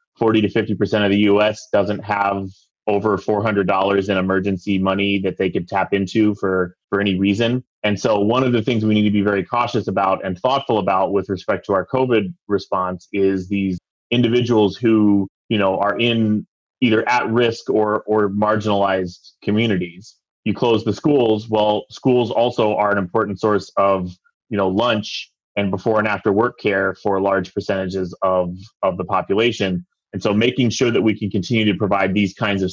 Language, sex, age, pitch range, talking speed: English, male, 20-39, 95-110 Hz, 175 wpm